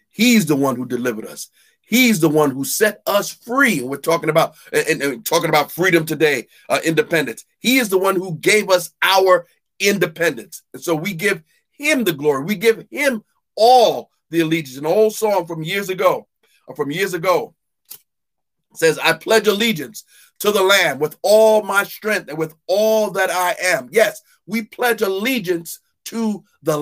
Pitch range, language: 145-200 Hz, English